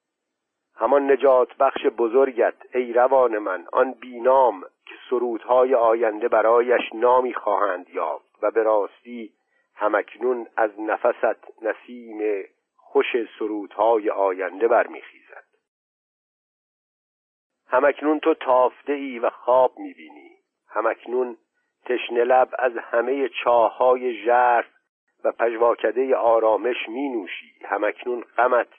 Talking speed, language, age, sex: 100 wpm, Persian, 50-69, male